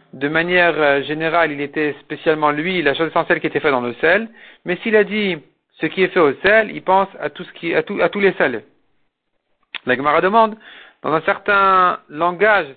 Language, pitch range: French, 150-195 Hz